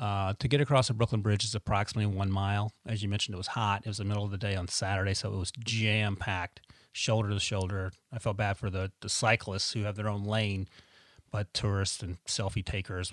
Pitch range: 95-115 Hz